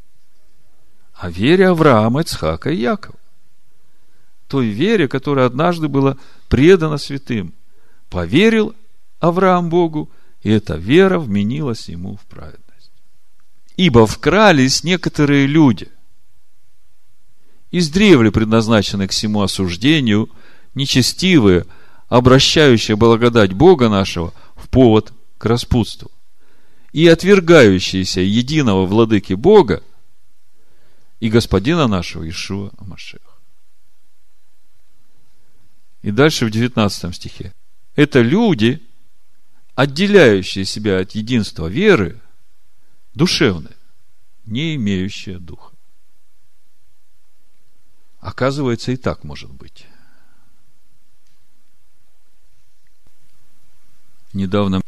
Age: 50-69